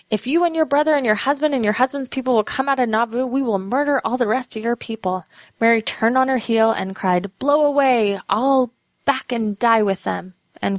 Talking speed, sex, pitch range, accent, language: 235 wpm, female, 195-240 Hz, American, English